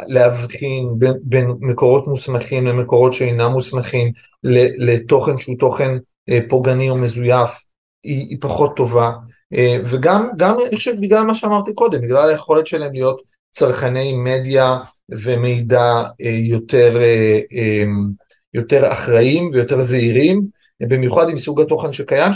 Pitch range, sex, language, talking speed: 125-160 Hz, male, Hebrew, 115 wpm